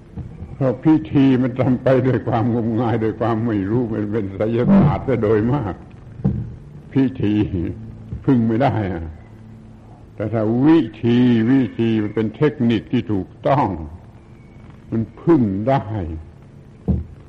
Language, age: Thai, 70-89